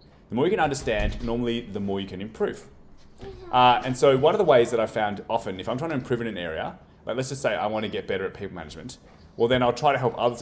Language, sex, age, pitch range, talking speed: English, male, 30-49, 95-120 Hz, 280 wpm